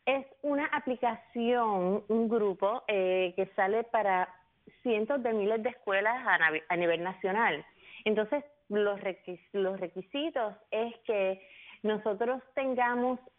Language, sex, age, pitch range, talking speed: English, female, 30-49, 190-235 Hz, 115 wpm